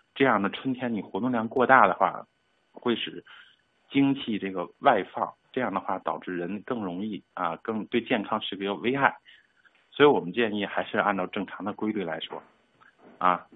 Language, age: Chinese, 50-69